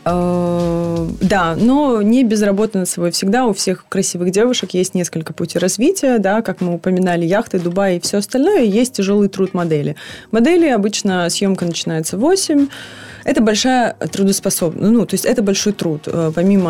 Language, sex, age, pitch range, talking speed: Ukrainian, female, 20-39, 175-210 Hz, 165 wpm